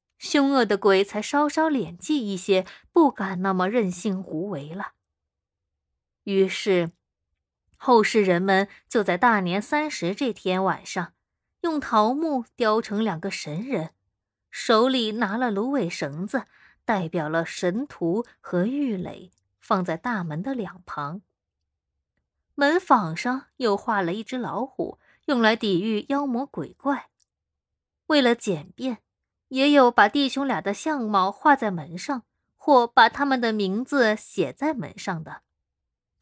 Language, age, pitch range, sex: Chinese, 20-39, 180-265 Hz, female